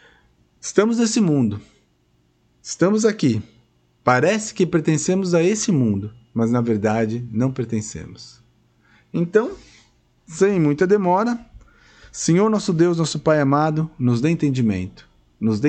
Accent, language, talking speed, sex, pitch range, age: Brazilian, Portuguese, 120 wpm, male, 115-170 Hz, 50-69